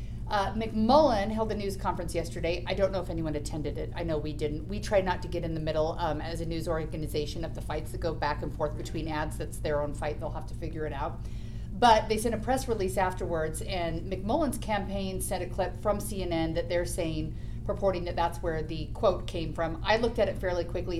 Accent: American